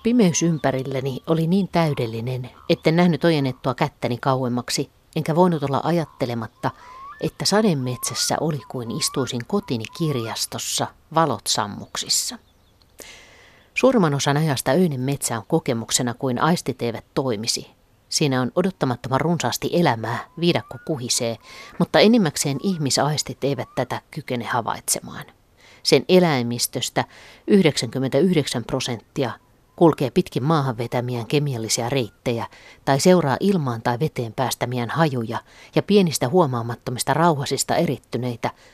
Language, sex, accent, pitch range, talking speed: Finnish, female, native, 120-160 Hz, 105 wpm